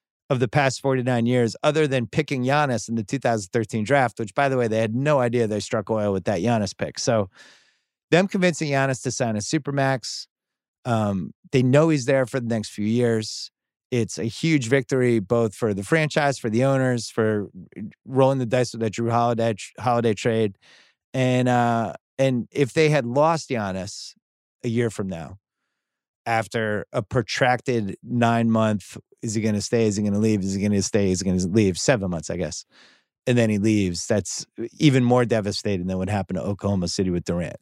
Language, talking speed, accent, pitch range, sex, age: English, 200 wpm, American, 100-130 Hz, male, 30-49